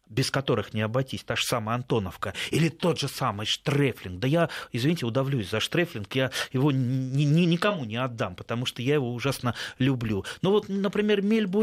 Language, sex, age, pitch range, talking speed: Russian, male, 30-49, 120-170 Hz, 185 wpm